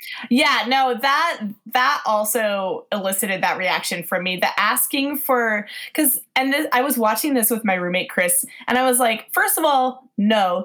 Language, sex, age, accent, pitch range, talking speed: English, female, 20-39, American, 195-265 Hz, 180 wpm